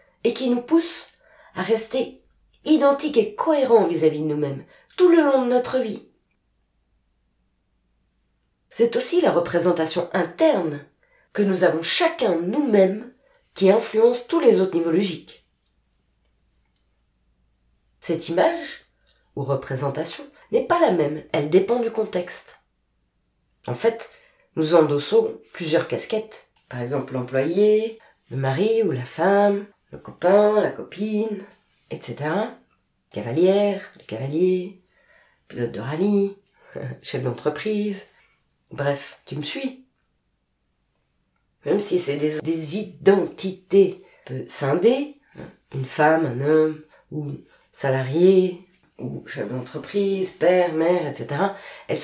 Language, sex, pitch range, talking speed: French, female, 160-250 Hz, 115 wpm